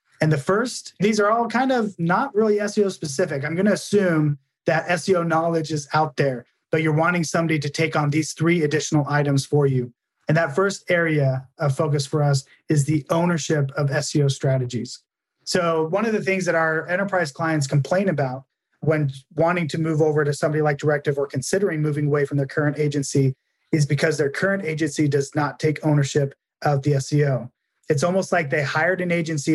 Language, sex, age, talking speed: English, male, 30-49, 195 wpm